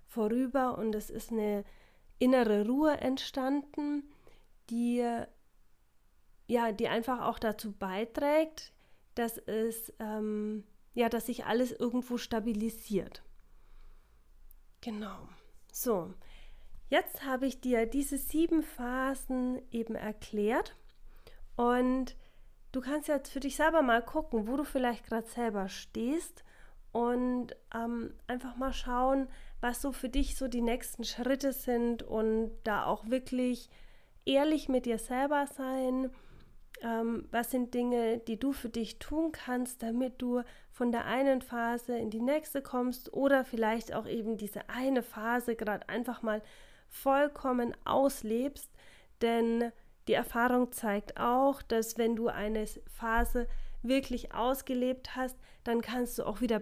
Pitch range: 225-260 Hz